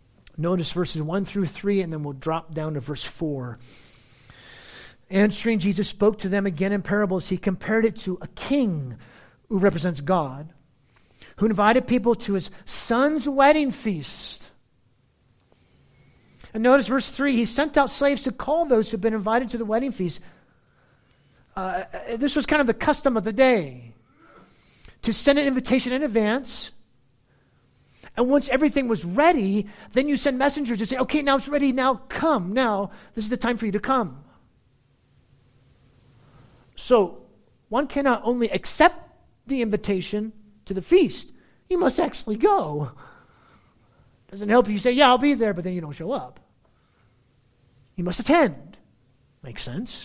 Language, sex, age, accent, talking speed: English, male, 40-59, American, 160 wpm